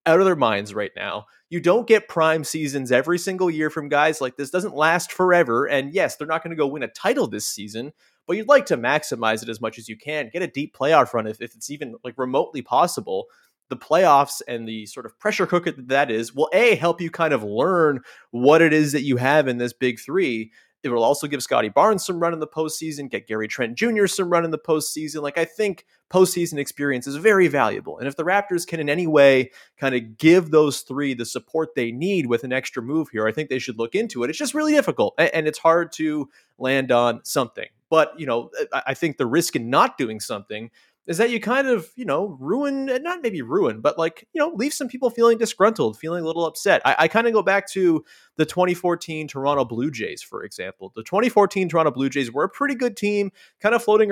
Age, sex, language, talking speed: 30-49, male, English, 235 wpm